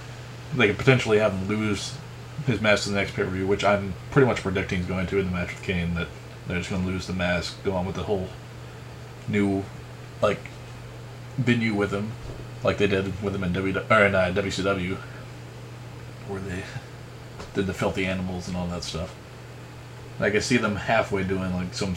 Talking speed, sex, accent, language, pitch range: 190 wpm, male, American, English, 95-120 Hz